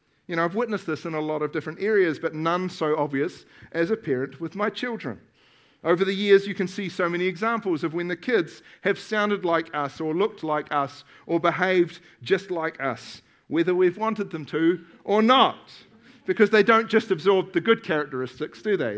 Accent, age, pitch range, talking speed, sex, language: Australian, 50-69, 155-210 Hz, 200 wpm, male, English